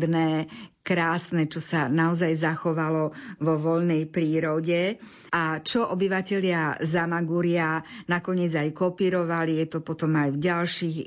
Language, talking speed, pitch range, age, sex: Slovak, 115 wpm, 160-185 Hz, 50-69, female